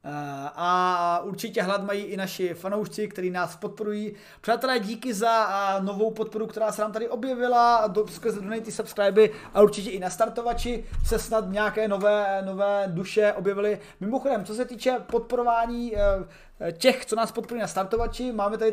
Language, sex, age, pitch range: Czech, male, 30-49, 195-230 Hz